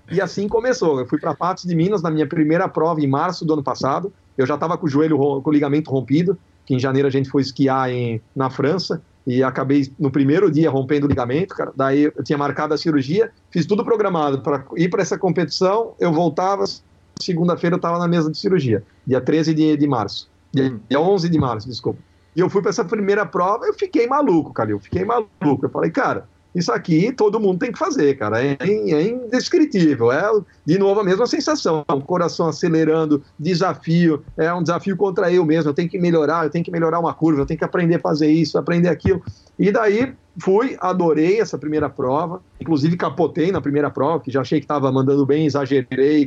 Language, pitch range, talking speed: Portuguese, 140-180 Hz, 215 wpm